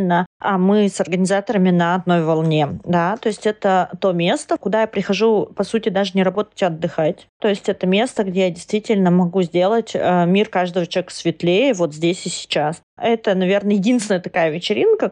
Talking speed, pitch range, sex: 180 wpm, 170-205 Hz, female